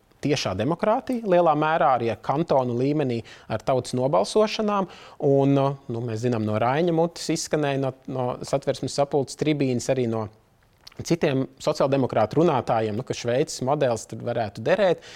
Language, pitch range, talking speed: English, 110-145 Hz, 145 wpm